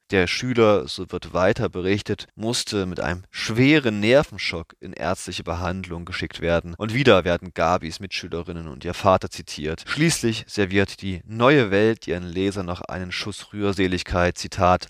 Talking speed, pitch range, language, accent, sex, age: 150 wpm, 85-110 Hz, German, German, male, 30-49